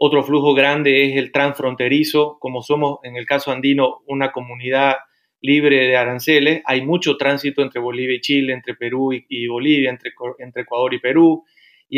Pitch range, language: 130-155 Hz, Spanish